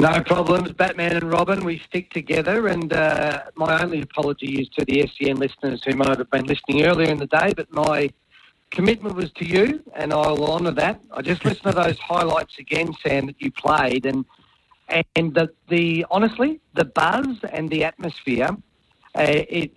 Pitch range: 150-180 Hz